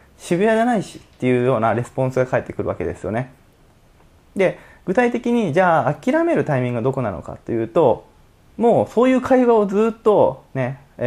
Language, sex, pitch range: Japanese, male, 120-175 Hz